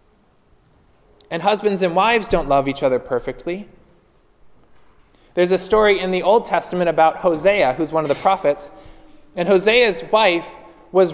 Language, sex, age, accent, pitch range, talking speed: English, male, 20-39, American, 165-220 Hz, 145 wpm